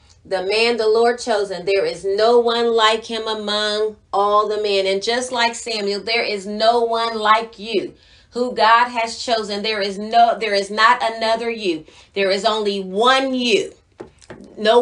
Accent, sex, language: American, female, English